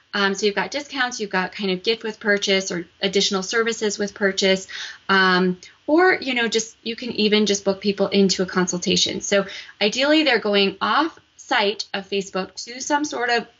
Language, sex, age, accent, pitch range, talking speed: English, female, 20-39, American, 190-215 Hz, 190 wpm